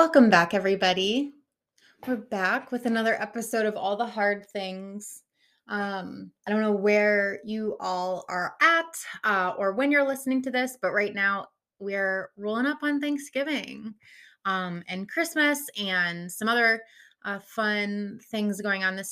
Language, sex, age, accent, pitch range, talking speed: English, female, 20-39, American, 190-245 Hz, 155 wpm